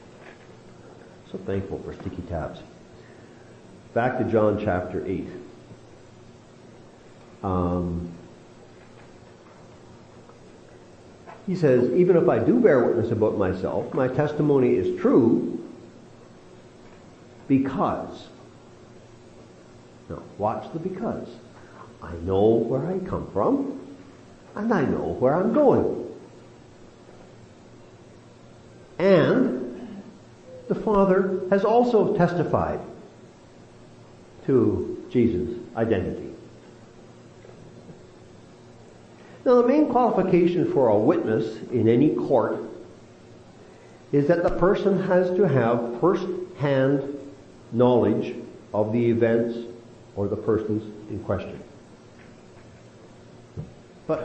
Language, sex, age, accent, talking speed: English, male, 50-69, American, 85 wpm